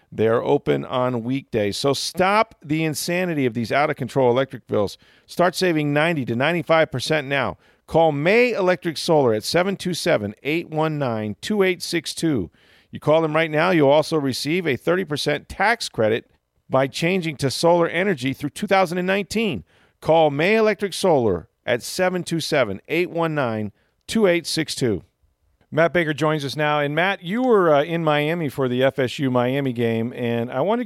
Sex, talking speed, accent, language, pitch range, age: male, 135 wpm, American, English, 115-165 Hz, 40-59